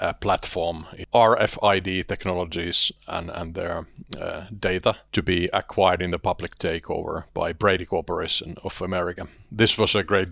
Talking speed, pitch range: 145 wpm, 85-105 Hz